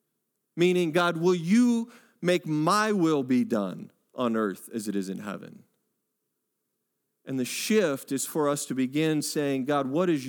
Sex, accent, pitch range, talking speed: male, American, 125-185 Hz, 165 wpm